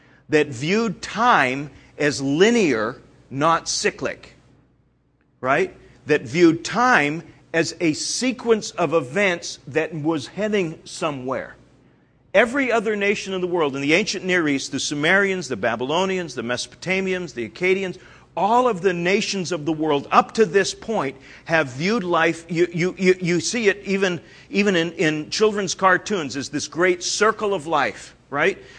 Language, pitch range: English, 150-200 Hz